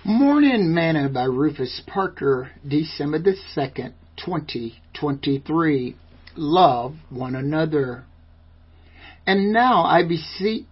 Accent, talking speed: American, 95 wpm